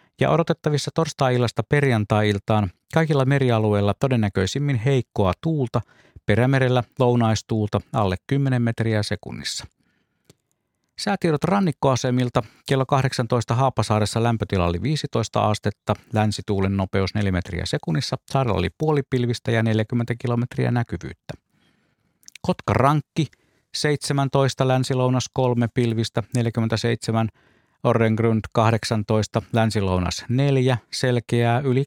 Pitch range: 105-135 Hz